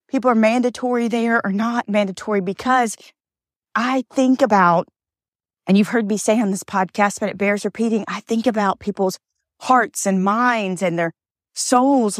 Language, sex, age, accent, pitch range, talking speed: English, female, 40-59, American, 185-230 Hz, 160 wpm